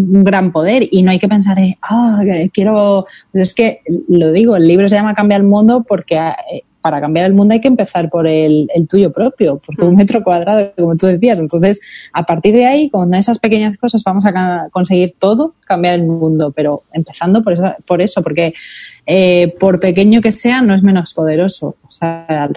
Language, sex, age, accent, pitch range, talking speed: Spanish, female, 20-39, Spanish, 165-205 Hz, 205 wpm